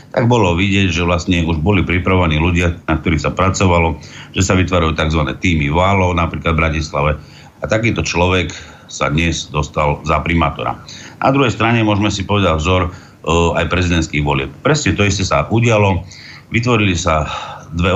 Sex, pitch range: male, 85-105 Hz